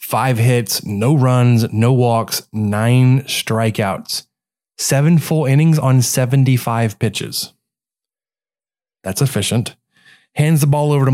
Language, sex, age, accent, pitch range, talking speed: English, male, 20-39, American, 110-140 Hz, 115 wpm